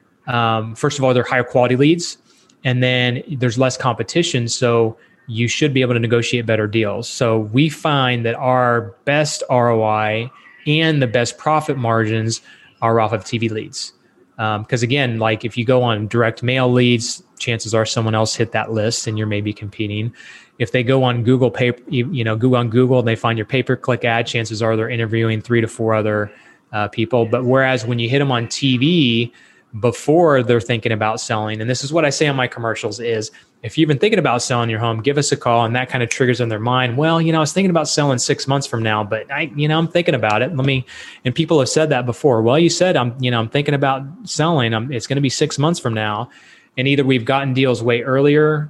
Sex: male